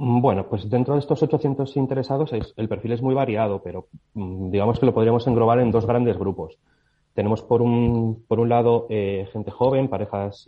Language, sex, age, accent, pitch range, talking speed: Spanish, male, 30-49, Spanish, 95-120 Hz, 185 wpm